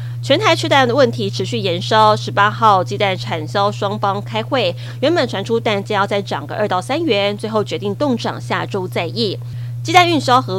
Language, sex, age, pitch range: Chinese, female, 20-39, 110-125 Hz